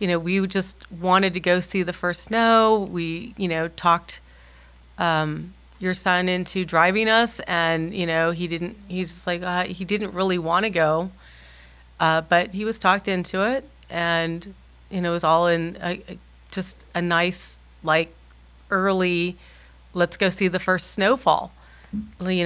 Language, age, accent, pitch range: English, 30-49, American, 145-180 Hz